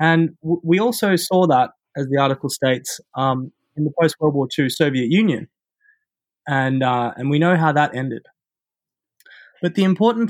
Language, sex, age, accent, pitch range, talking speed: English, male, 20-39, Australian, 130-170 Hz, 165 wpm